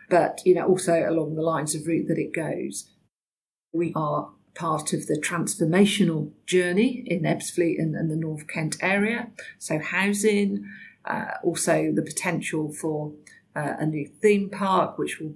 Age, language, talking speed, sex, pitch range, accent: 50-69, English, 160 wpm, female, 155-185 Hz, British